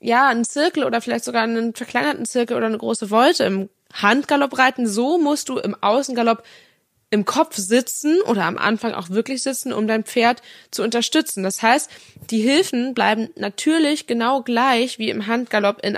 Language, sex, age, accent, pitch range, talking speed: German, female, 20-39, German, 195-235 Hz, 175 wpm